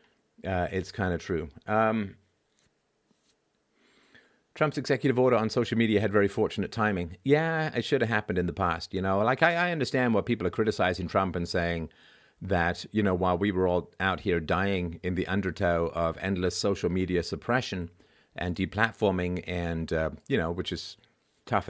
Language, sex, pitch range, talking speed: English, male, 85-110 Hz, 175 wpm